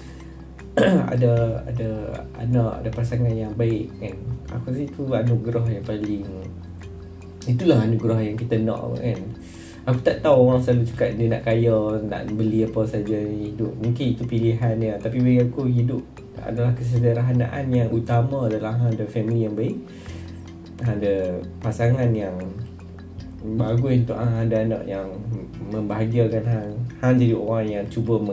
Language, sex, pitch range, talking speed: Malay, male, 105-125 Hz, 140 wpm